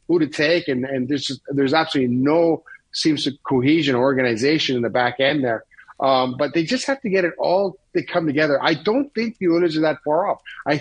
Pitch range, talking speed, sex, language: 135-175 Hz, 215 wpm, male, English